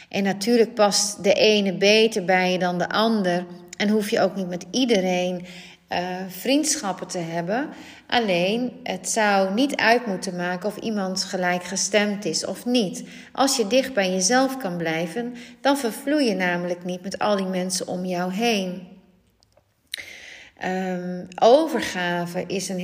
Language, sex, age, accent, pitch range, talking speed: Dutch, female, 40-59, Dutch, 180-230 Hz, 155 wpm